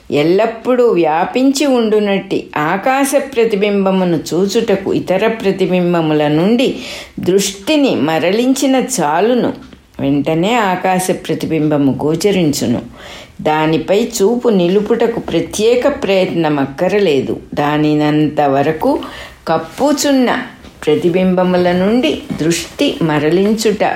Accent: Indian